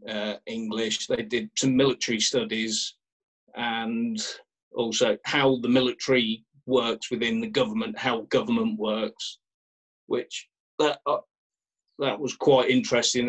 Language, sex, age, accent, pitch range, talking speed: English, male, 40-59, British, 110-135 Hz, 115 wpm